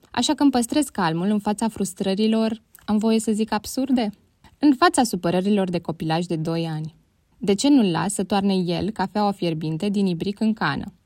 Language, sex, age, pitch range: Romanian, female, 20-39, 175-230 Hz